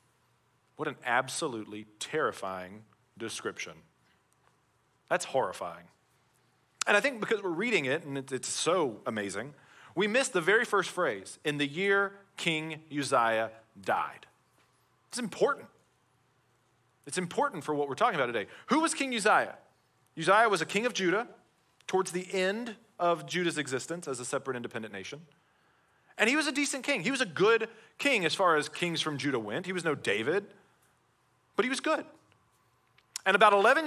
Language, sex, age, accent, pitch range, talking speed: English, male, 30-49, American, 140-195 Hz, 160 wpm